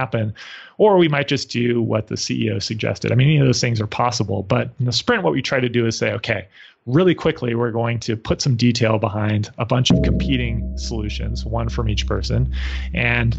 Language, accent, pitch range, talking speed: English, American, 110-130 Hz, 220 wpm